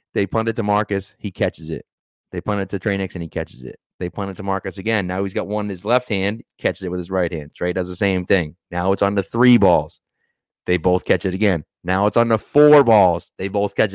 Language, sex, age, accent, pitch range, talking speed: English, male, 30-49, American, 90-115 Hz, 265 wpm